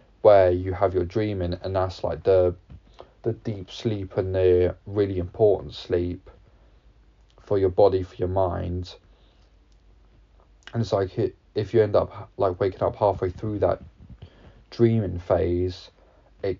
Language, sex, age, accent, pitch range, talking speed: English, male, 20-39, British, 90-105 Hz, 140 wpm